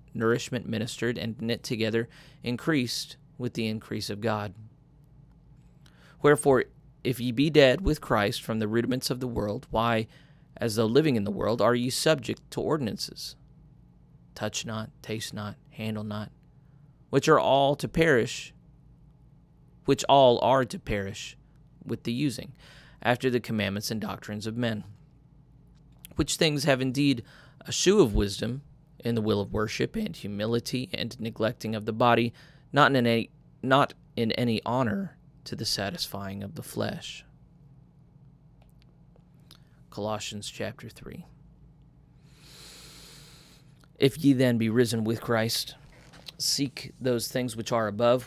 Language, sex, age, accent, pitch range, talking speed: English, male, 30-49, American, 110-145 Hz, 140 wpm